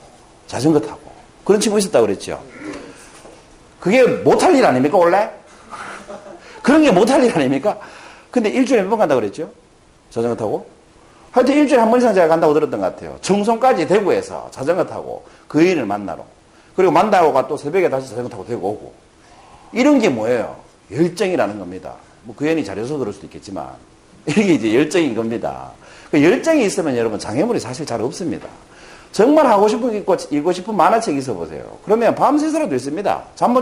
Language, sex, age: Korean, male, 40-59